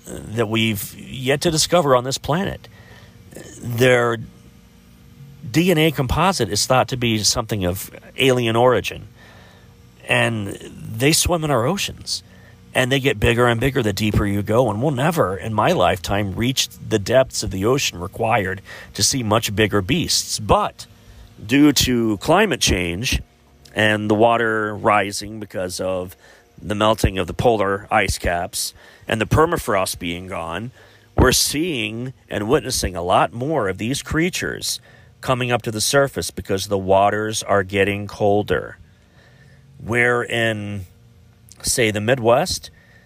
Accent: American